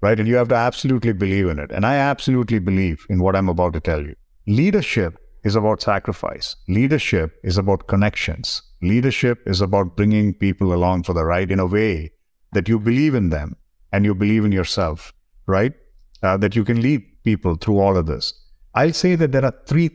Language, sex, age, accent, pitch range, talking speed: English, male, 50-69, Indian, 95-125 Hz, 200 wpm